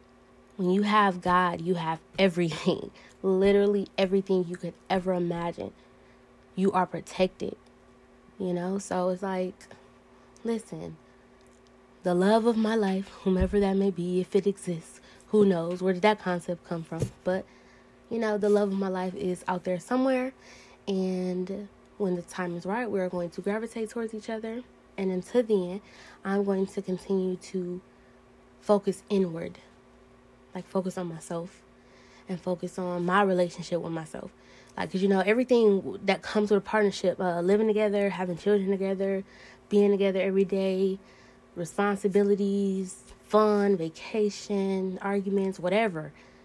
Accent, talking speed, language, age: American, 145 wpm, English, 20-39